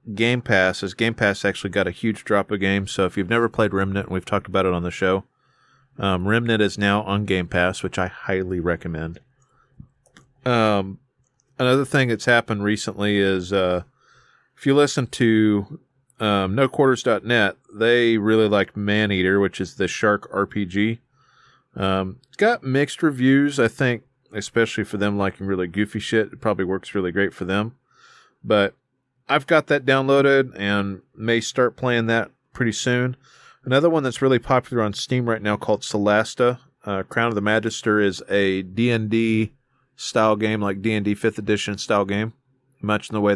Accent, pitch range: American, 100-130 Hz